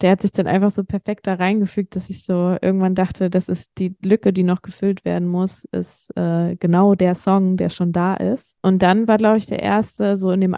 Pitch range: 180-195 Hz